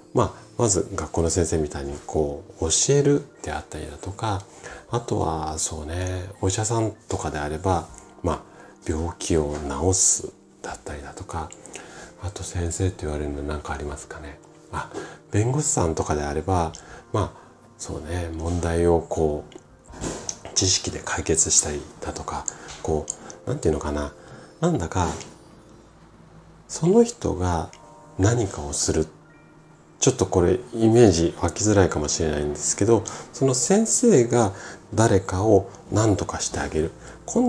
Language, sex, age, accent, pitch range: Japanese, male, 40-59, native, 80-110 Hz